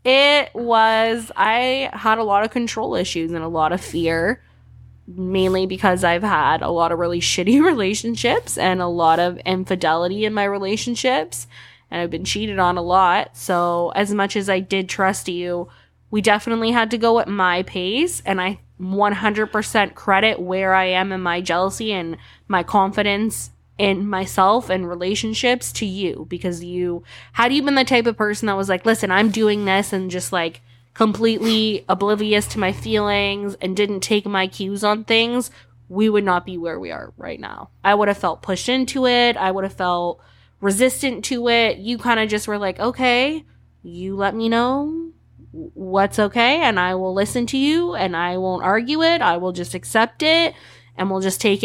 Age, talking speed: 20-39, 185 wpm